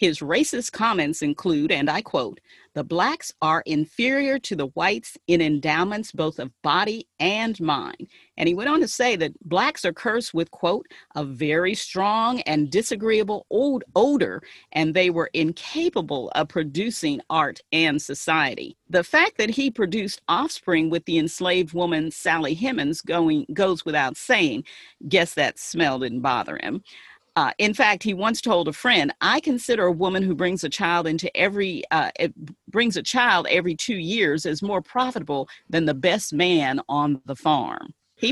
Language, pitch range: English, 155-230 Hz